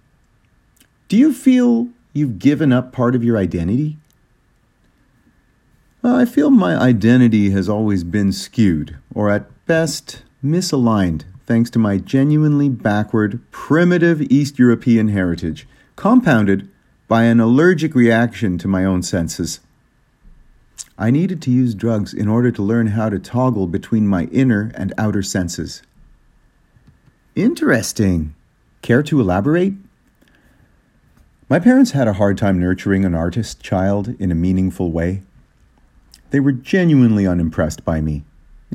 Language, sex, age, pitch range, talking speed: English, male, 50-69, 95-140 Hz, 130 wpm